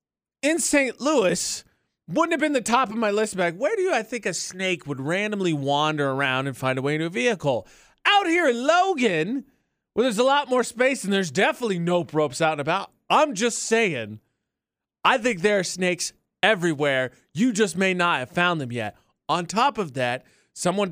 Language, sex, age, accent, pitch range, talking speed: English, male, 30-49, American, 165-225 Hz, 205 wpm